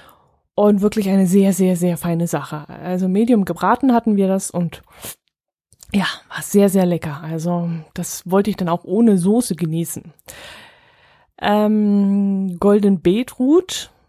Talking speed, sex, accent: 135 wpm, female, German